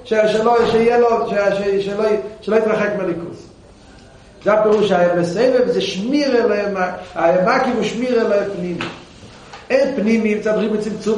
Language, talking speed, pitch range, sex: Hebrew, 145 wpm, 145-210 Hz, male